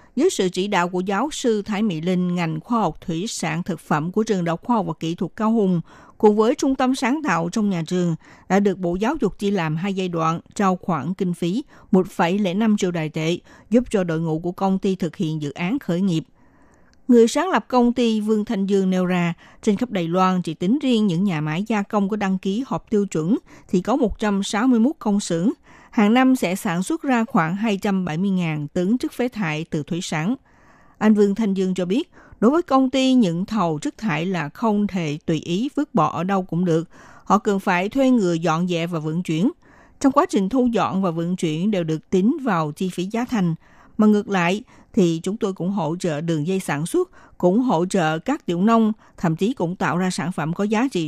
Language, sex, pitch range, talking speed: Vietnamese, female, 170-220 Hz, 230 wpm